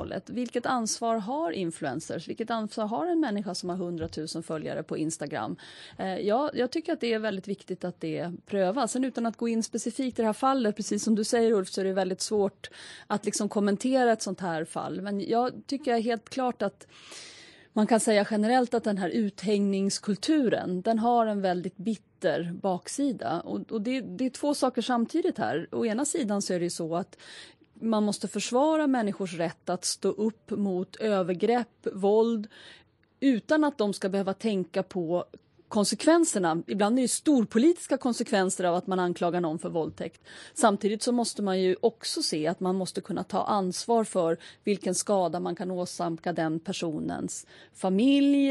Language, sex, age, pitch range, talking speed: Swedish, female, 30-49, 185-240 Hz, 175 wpm